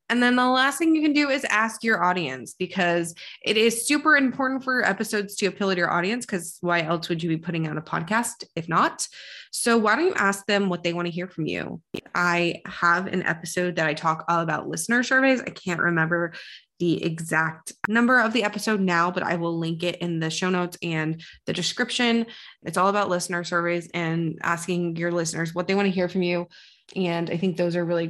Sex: female